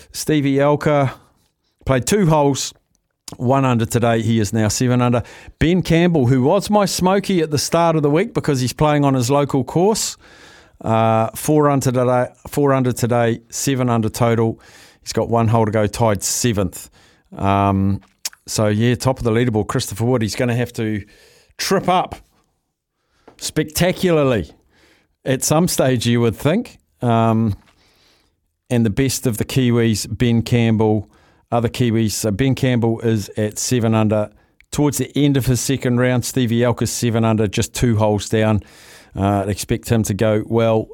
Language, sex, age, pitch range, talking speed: English, male, 50-69, 110-145 Hz, 165 wpm